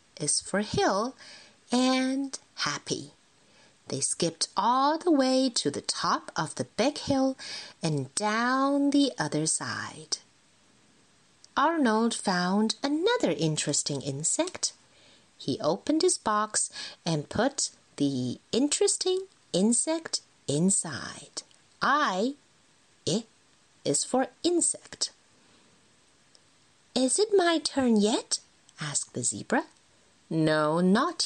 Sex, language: female, Chinese